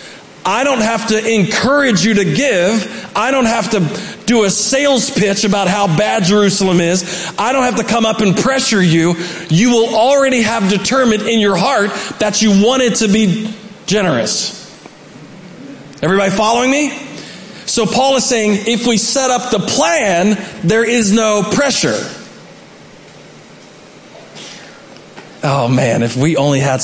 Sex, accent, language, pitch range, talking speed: male, American, English, 180-230 Hz, 150 wpm